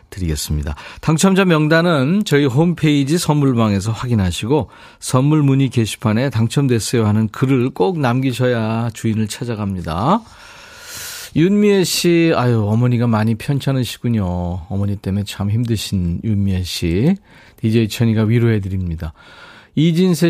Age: 40-59